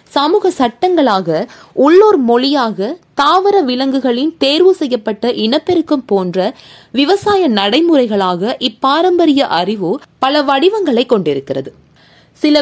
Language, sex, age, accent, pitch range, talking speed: Tamil, female, 20-39, native, 215-335 Hz, 85 wpm